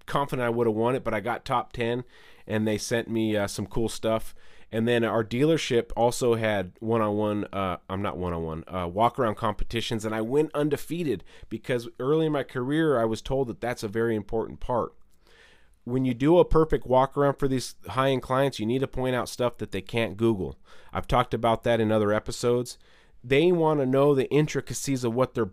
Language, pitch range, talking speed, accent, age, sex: English, 100-130 Hz, 210 wpm, American, 30-49, male